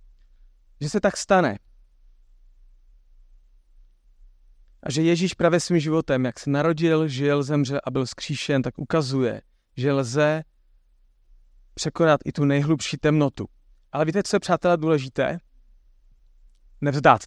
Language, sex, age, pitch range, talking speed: Czech, male, 30-49, 130-170 Hz, 120 wpm